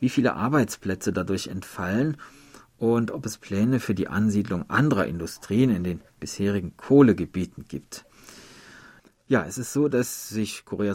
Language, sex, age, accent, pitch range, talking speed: German, male, 40-59, German, 100-125 Hz, 140 wpm